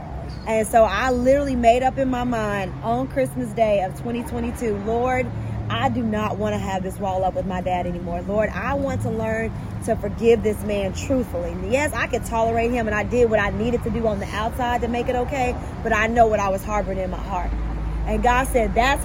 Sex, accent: female, American